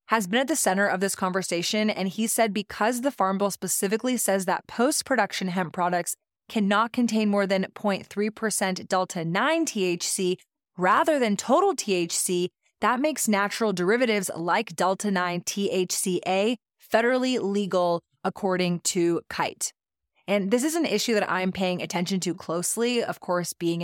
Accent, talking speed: American, 145 wpm